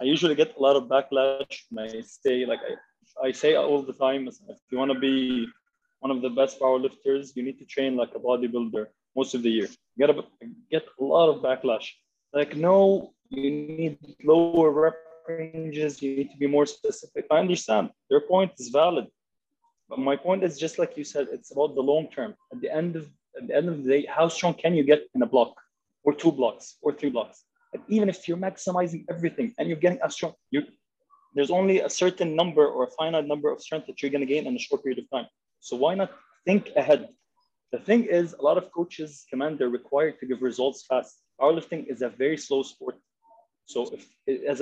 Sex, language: male, Arabic